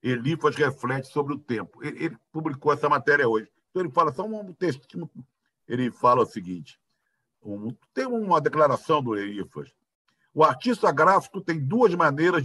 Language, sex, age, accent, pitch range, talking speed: Portuguese, male, 60-79, Brazilian, 125-160 Hz, 145 wpm